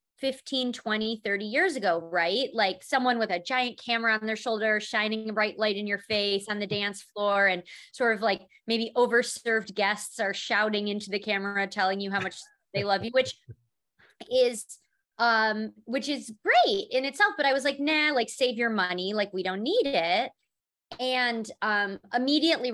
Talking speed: 185 wpm